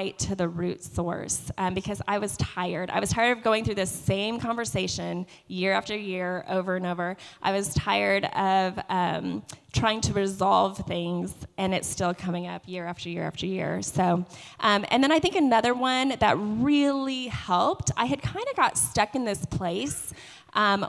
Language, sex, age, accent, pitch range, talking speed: English, female, 20-39, American, 180-230 Hz, 185 wpm